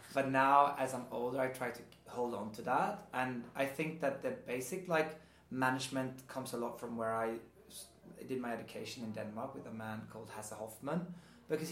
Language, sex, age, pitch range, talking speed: German, male, 20-39, 115-135 Hz, 195 wpm